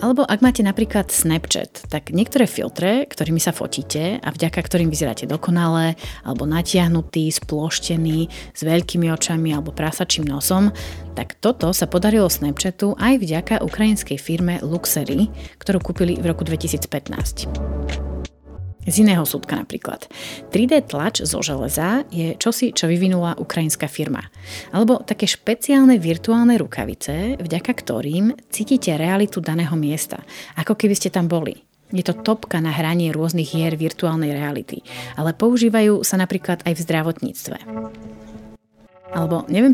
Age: 30-49